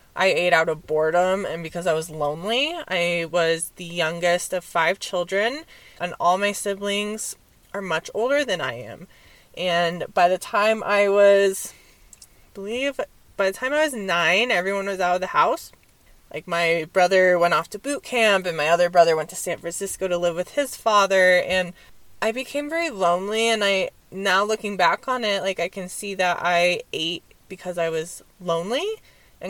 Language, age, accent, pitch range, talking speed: English, 20-39, American, 170-205 Hz, 185 wpm